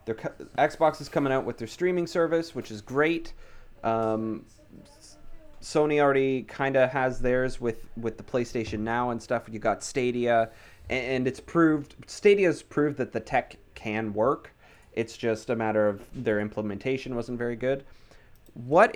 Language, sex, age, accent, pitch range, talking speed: English, male, 30-49, American, 105-135 Hz, 150 wpm